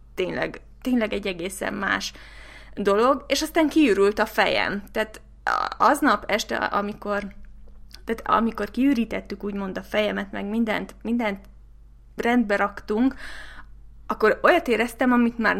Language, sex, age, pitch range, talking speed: Hungarian, female, 20-39, 200-235 Hz, 120 wpm